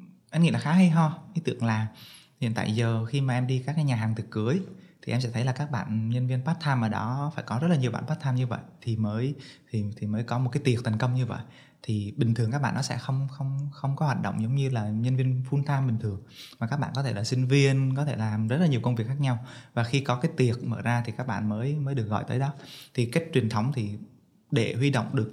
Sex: male